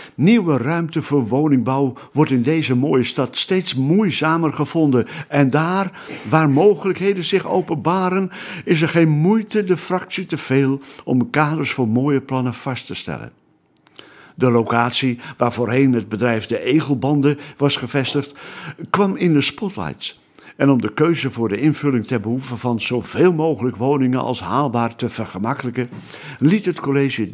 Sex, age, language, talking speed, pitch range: male, 60-79, Dutch, 150 wpm, 120-155 Hz